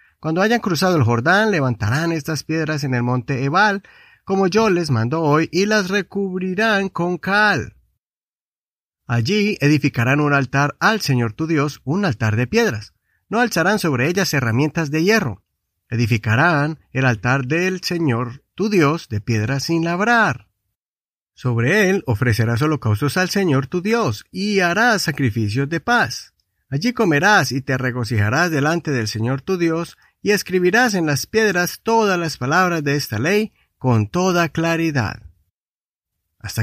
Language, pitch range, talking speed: Spanish, 125-190 Hz, 145 wpm